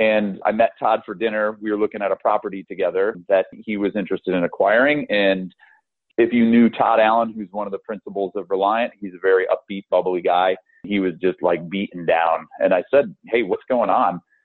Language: English